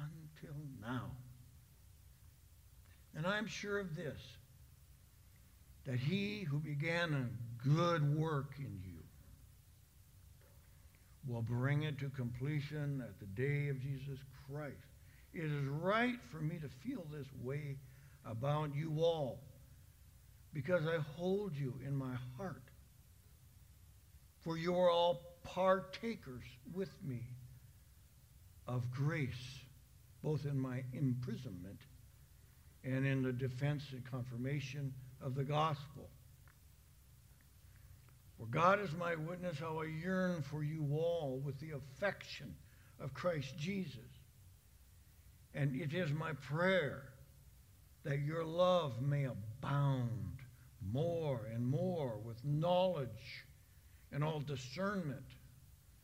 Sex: male